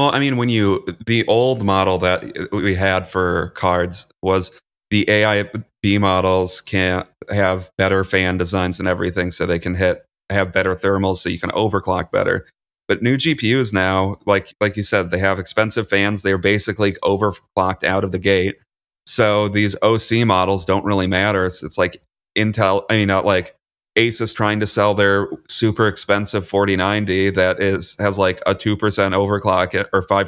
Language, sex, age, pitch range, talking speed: English, male, 30-49, 95-105 Hz, 180 wpm